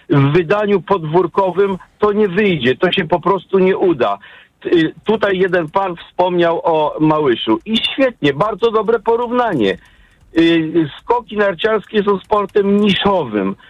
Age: 50-69